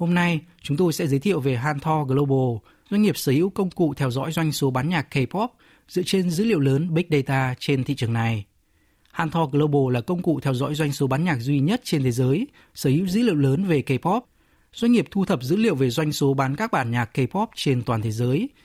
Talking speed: 240 wpm